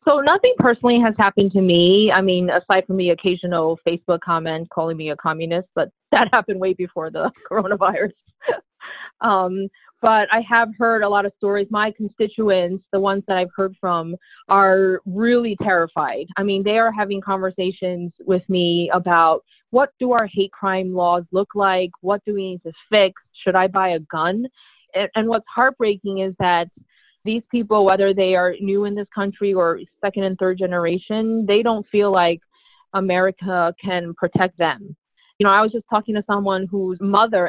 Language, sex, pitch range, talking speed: English, female, 175-205 Hz, 180 wpm